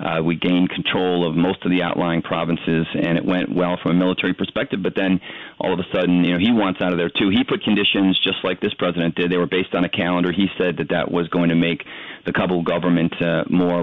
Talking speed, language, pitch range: 255 wpm, English, 85-95 Hz